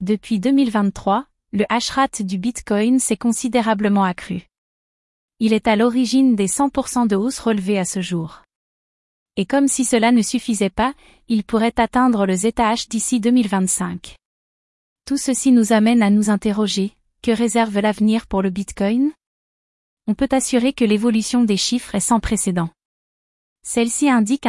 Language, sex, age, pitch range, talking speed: French, female, 30-49, 205-245 Hz, 145 wpm